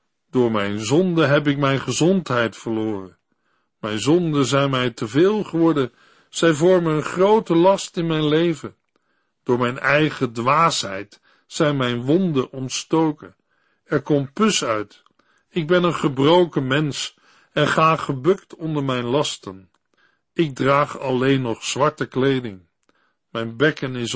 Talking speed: 135 wpm